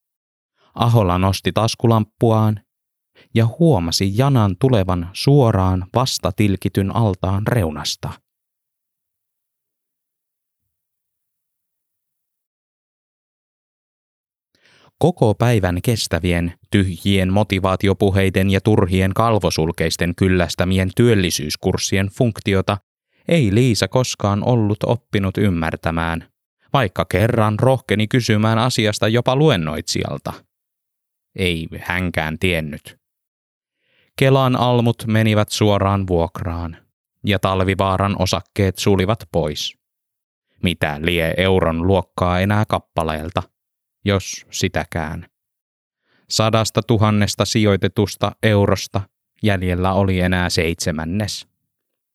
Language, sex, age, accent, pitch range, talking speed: Finnish, male, 20-39, native, 90-115 Hz, 75 wpm